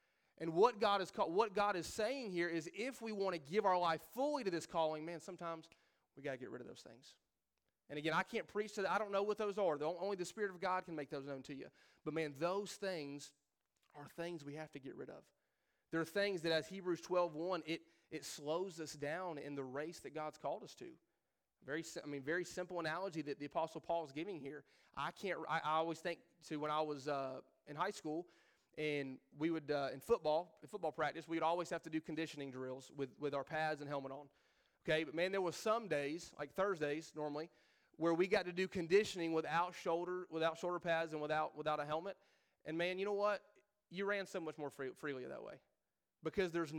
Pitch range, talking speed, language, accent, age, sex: 150-185 Hz, 230 wpm, English, American, 30-49, male